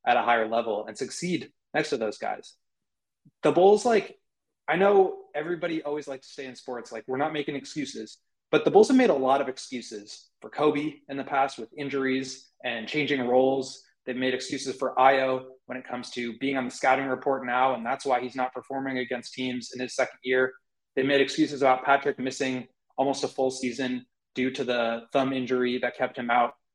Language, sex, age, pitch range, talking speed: English, male, 20-39, 130-150 Hz, 205 wpm